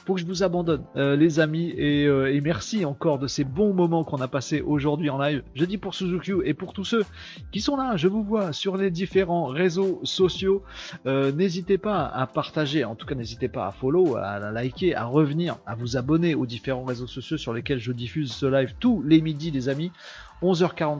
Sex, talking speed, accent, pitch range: male, 225 wpm, French, 130-170 Hz